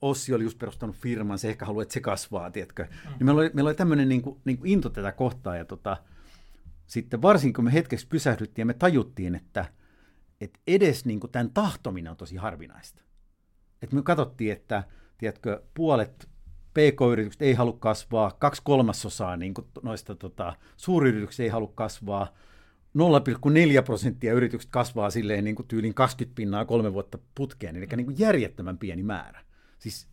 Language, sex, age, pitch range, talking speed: Finnish, male, 50-69, 95-130 Hz, 170 wpm